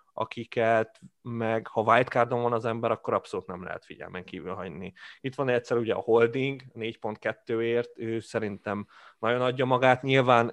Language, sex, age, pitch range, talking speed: Hungarian, male, 20-39, 110-130 Hz, 155 wpm